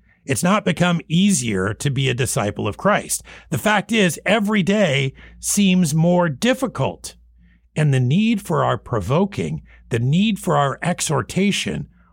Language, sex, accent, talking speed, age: English, male, American, 145 wpm, 50-69